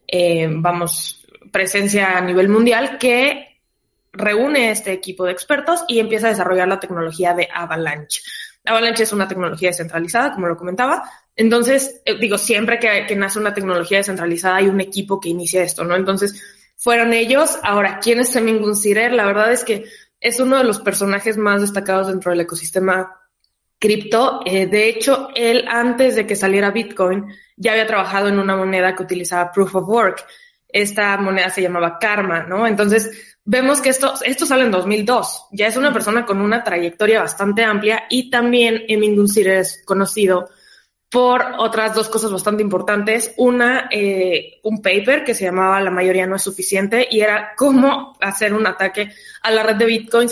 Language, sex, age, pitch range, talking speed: Spanish, female, 20-39, 190-230 Hz, 175 wpm